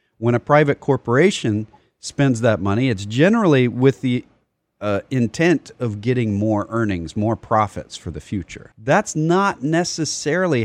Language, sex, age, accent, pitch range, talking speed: English, male, 40-59, American, 110-140 Hz, 140 wpm